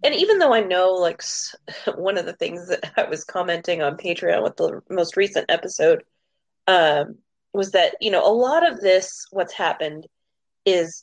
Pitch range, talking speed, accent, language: 155-215 Hz, 180 wpm, American, English